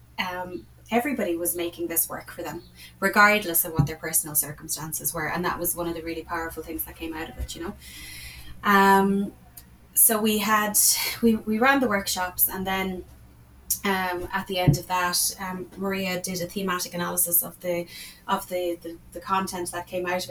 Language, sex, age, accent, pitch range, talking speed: English, female, 20-39, Irish, 170-190 Hz, 190 wpm